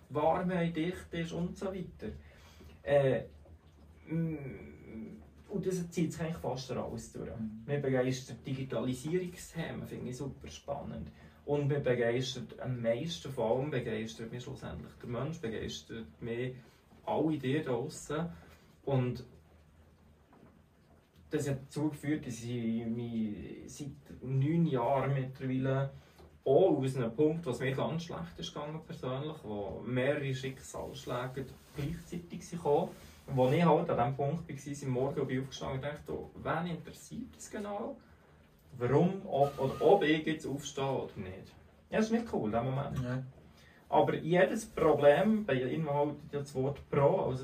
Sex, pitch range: male, 120-155 Hz